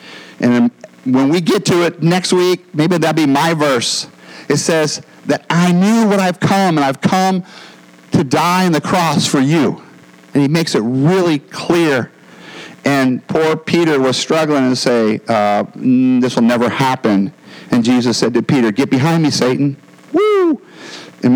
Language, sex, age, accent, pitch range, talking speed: English, male, 50-69, American, 115-165 Hz, 170 wpm